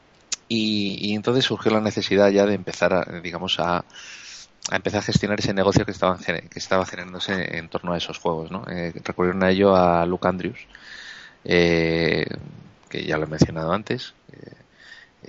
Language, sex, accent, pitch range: Spanish, male, Spanish, 85-100 Hz